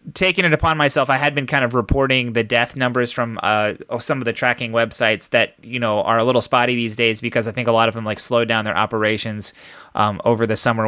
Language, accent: English, American